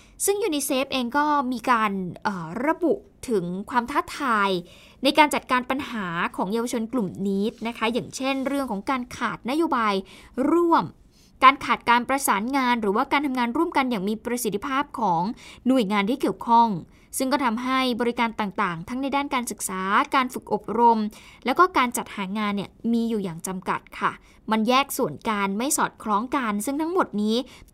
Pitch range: 215-275 Hz